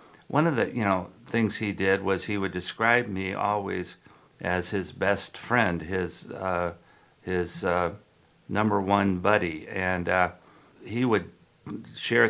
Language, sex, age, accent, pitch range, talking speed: English, male, 60-79, American, 90-110 Hz, 145 wpm